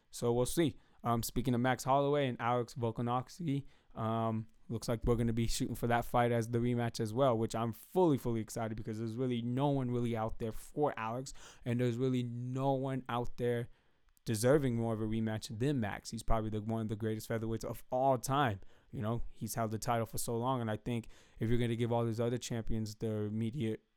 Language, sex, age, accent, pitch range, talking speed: English, male, 20-39, American, 110-125 Hz, 225 wpm